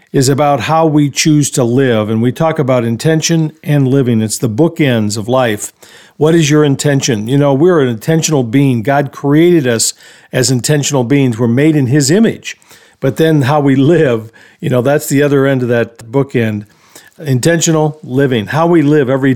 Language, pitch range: English, 120-150 Hz